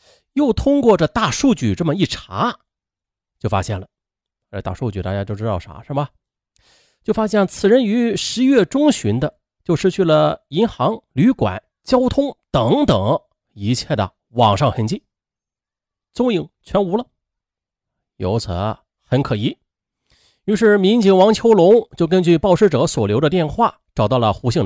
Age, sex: 30-49, male